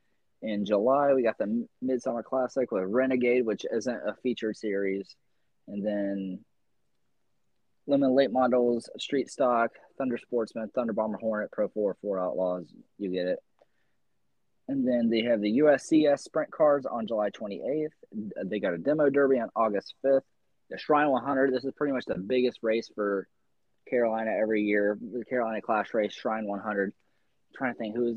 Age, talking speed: 20-39, 165 wpm